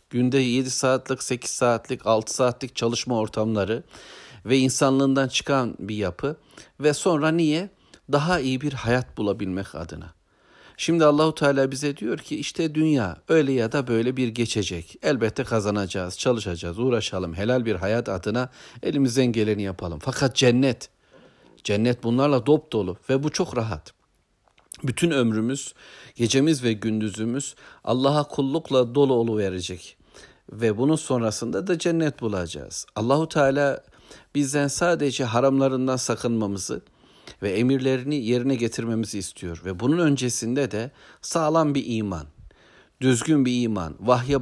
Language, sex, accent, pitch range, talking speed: Turkish, male, native, 110-135 Hz, 130 wpm